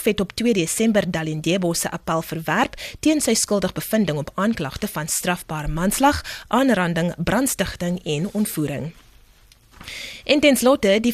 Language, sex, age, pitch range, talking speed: English, female, 20-39, 165-210 Hz, 125 wpm